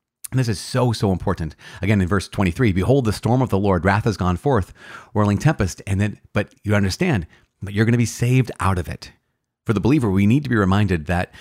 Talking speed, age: 235 wpm, 30-49